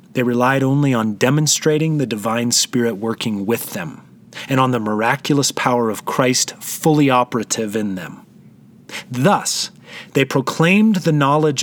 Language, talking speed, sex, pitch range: English, 140 wpm, male, 125-170 Hz